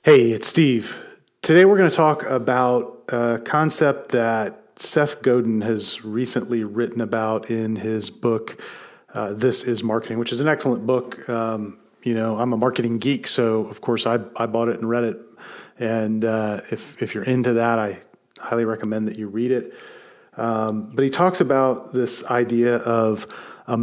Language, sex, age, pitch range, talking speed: English, male, 40-59, 115-125 Hz, 175 wpm